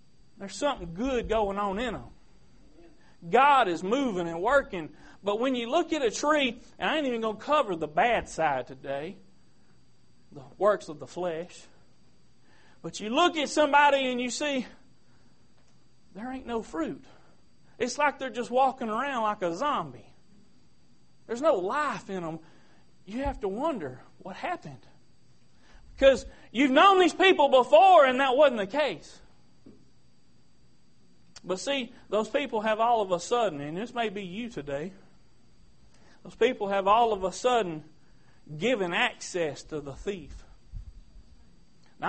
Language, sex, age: English, male, 40-59